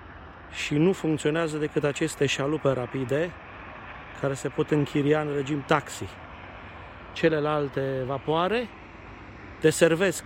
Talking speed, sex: 100 wpm, male